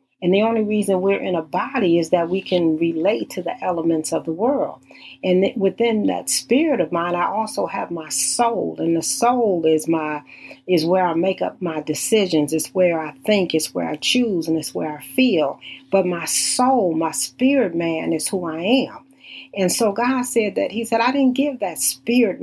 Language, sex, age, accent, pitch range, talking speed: English, female, 40-59, American, 165-225 Hz, 210 wpm